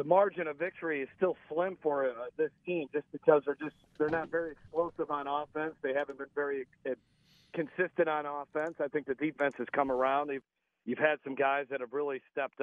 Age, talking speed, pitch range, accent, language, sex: 40-59, 215 wpm, 145-180 Hz, American, English, male